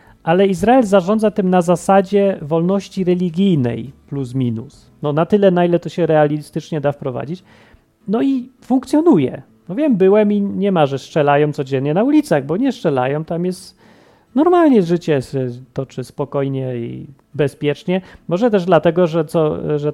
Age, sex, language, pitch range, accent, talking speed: 40-59, male, Polish, 135-185 Hz, native, 155 wpm